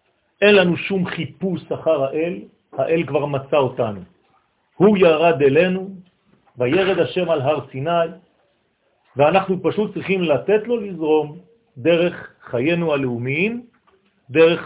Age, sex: 50-69, male